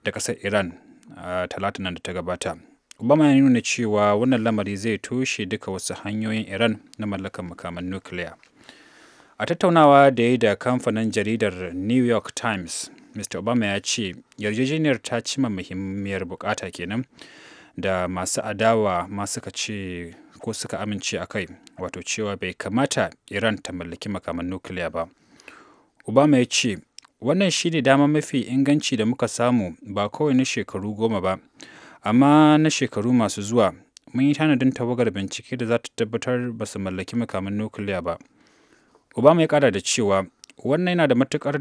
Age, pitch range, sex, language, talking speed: 30-49, 95-125 Hz, male, English, 125 wpm